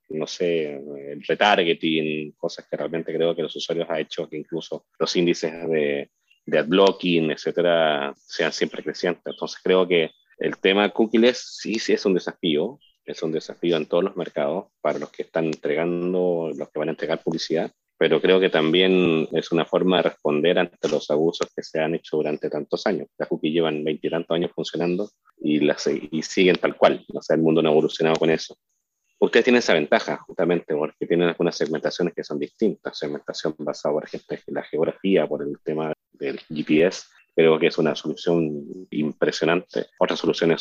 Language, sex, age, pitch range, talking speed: Spanish, male, 30-49, 75-90 Hz, 185 wpm